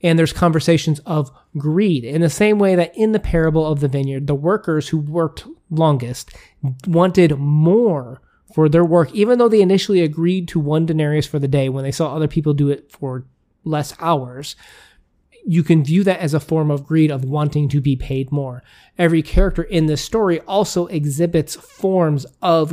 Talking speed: 185 wpm